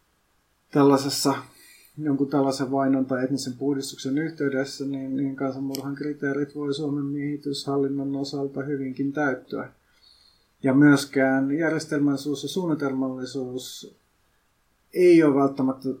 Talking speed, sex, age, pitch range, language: 95 wpm, male, 30-49, 130-145 Hz, Finnish